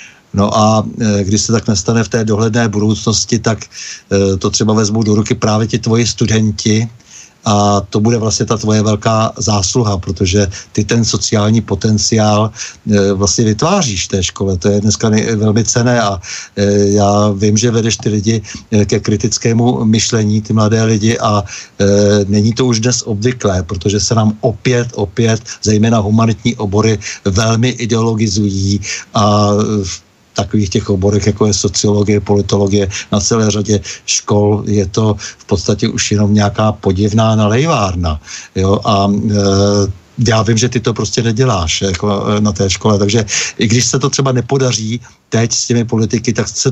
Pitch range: 100-115 Hz